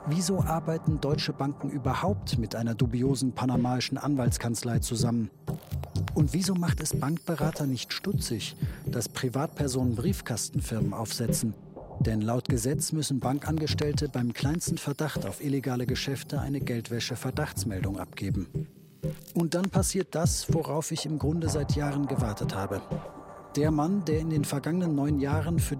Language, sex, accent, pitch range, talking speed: German, male, German, 130-160 Hz, 135 wpm